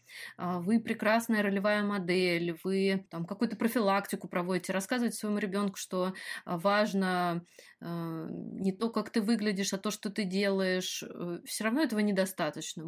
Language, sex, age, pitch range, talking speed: Russian, female, 20-39, 180-215 Hz, 135 wpm